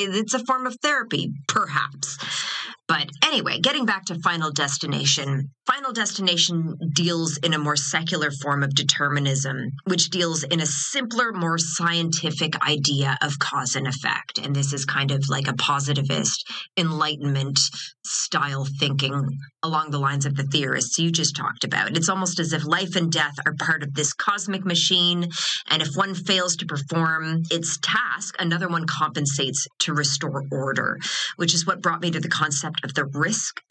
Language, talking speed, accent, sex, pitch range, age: English, 165 wpm, American, female, 145-175 Hz, 30-49